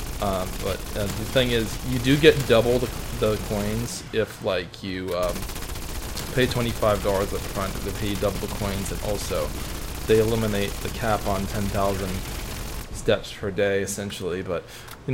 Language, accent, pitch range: English, American, 100-120 Hz